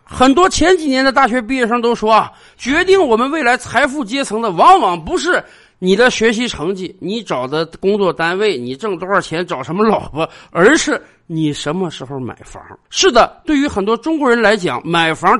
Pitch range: 185-290 Hz